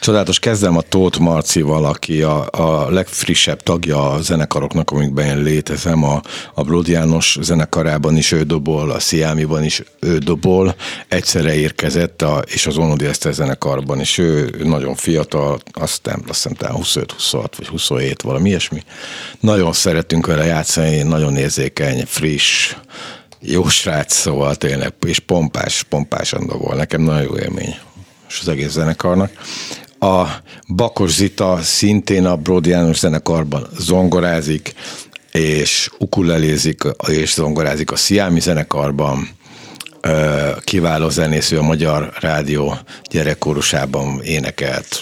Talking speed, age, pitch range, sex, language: 125 wpm, 50-69, 75-85 Hz, male, Hungarian